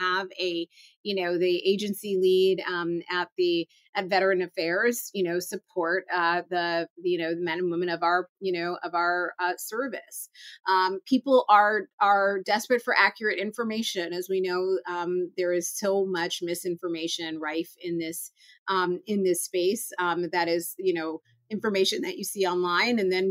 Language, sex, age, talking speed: English, female, 30-49, 175 wpm